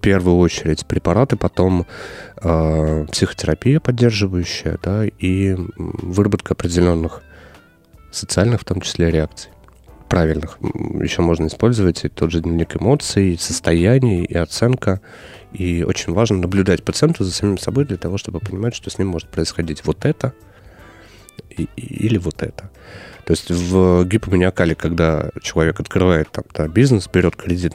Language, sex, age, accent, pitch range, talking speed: Russian, male, 30-49, native, 85-105 Hz, 140 wpm